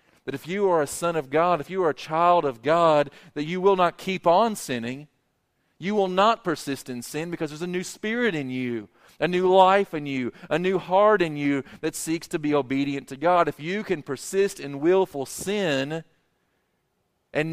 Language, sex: English, male